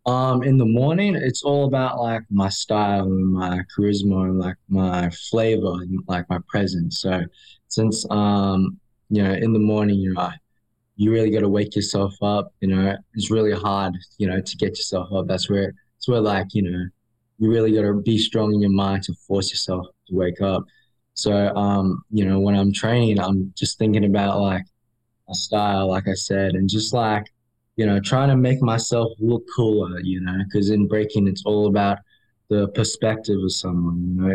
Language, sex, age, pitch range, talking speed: English, male, 20-39, 95-110 Hz, 195 wpm